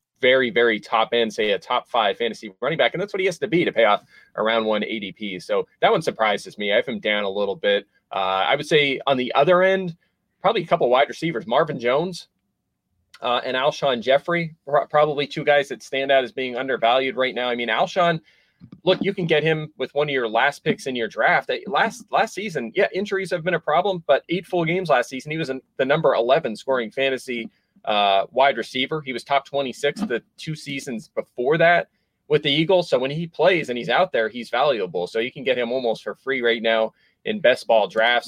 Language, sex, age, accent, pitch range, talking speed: English, male, 30-49, American, 115-160 Hz, 225 wpm